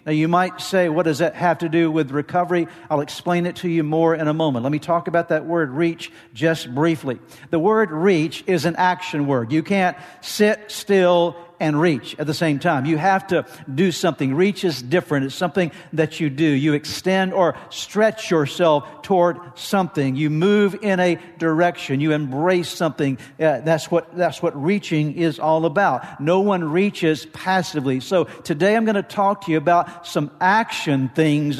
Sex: male